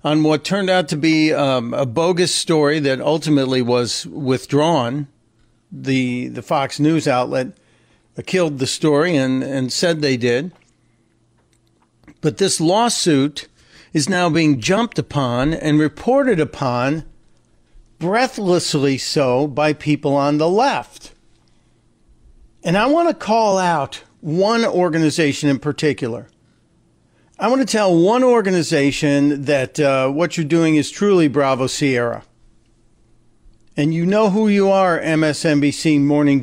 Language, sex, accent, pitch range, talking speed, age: English, male, American, 130-180 Hz, 130 wpm, 50-69